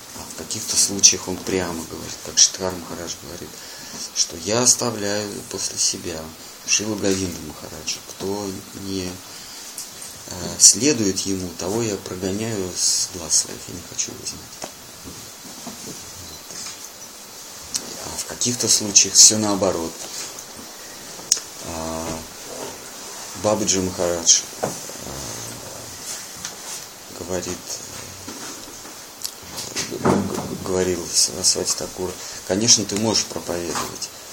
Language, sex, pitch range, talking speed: Russian, male, 90-105 Hz, 85 wpm